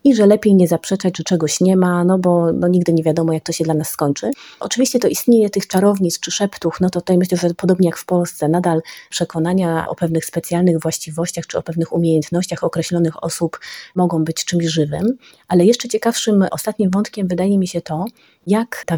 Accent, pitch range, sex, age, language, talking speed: native, 165-185 Hz, female, 30-49, Polish, 200 wpm